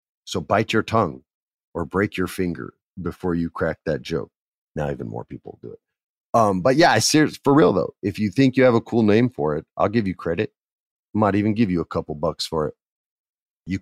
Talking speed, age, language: 220 wpm, 30-49, English